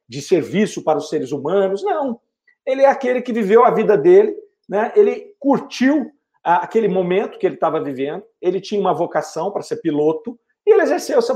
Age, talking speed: 50-69, 185 wpm